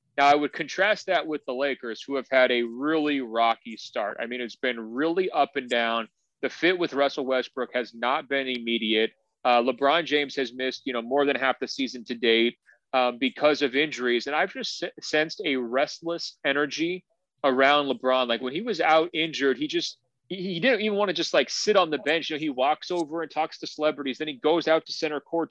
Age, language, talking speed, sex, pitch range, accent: 30-49, English, 220 wpm, male, 130-160 Hz, American